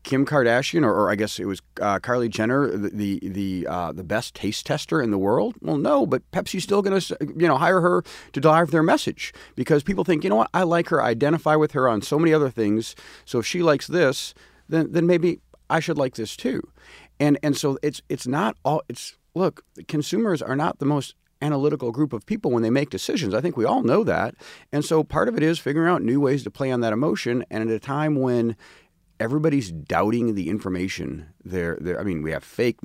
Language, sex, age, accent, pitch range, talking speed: English, male, 40-59, American, 110-155 Hz, 230 wpm